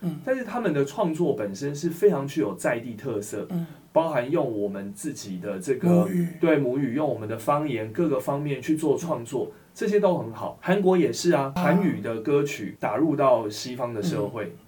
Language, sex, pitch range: Chinese, male, 110-170 Hz